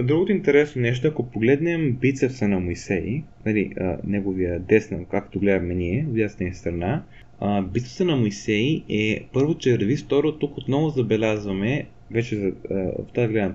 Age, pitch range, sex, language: 20-39, 105-140 Hz, male, Bulgarian